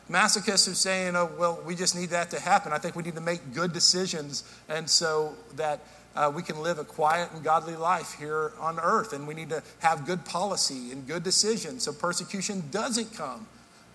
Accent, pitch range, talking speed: American, 165-220 Hz, 205 wpm